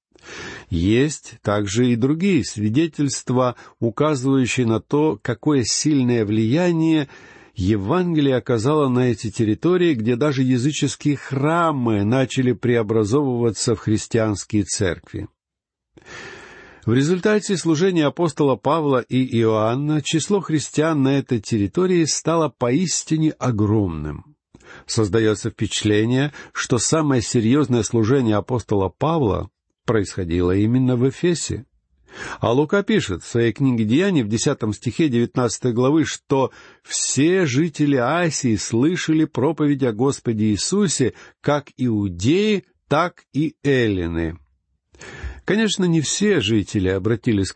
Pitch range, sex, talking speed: 110-150 Hz, male, 105 wpm